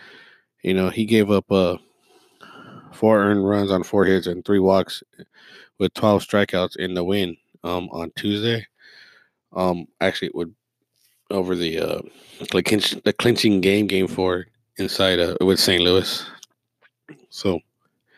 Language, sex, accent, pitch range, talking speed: English, male, American, 85-100 Hz, 150 wpm